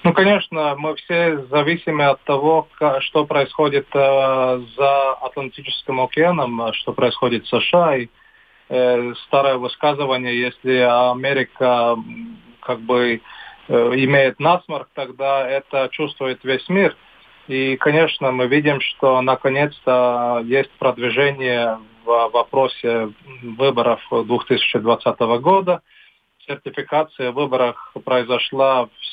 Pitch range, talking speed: 120-140 Hz, 95 wpm